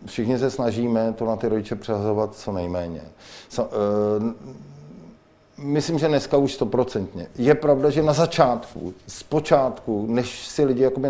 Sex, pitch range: male, 110-135 Hz